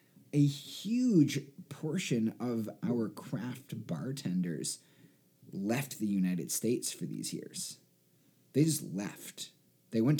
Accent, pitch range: American, 100-145 Hz